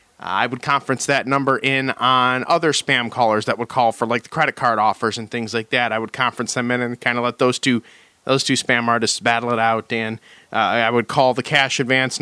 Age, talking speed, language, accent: 30-49, 240 wpm, English, American